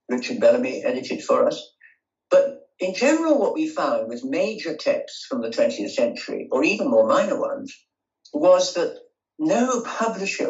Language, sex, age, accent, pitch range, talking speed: English, male, 60-79, British, 250-290 Hz, 155 wpm